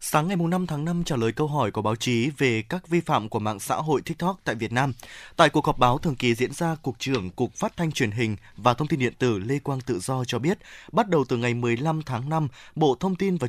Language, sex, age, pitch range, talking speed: Vietnamese, male, 20-39, 125-175 Hz, 270 wpm